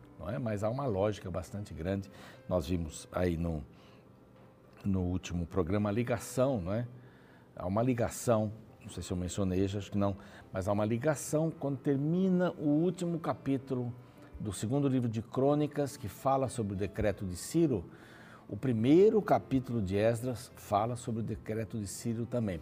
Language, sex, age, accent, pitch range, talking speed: Portuguese, male, 60-79, Brazilian, 95-135 Hz, 160 wpm